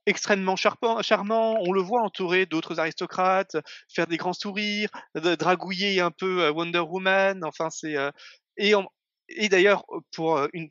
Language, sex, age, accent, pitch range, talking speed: French, male, 30-49, French, 155-195 Hz, 150 wpm